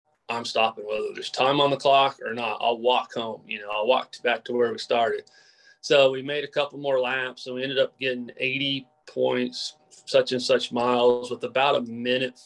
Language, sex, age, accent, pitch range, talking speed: English, male, 30-49, American, 125-165 Hz, 210 wpm